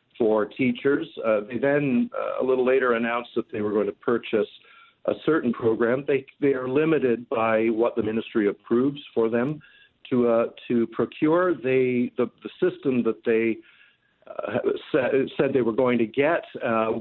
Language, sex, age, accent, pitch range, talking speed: English, male, 50-69, American, 110-130 Hz, 175 wpm